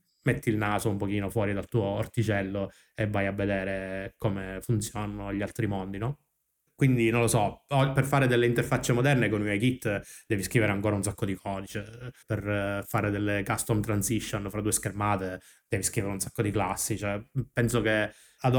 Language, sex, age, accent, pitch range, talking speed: Italian, male, 20-39, native, 100-115 Hz, 180 wpm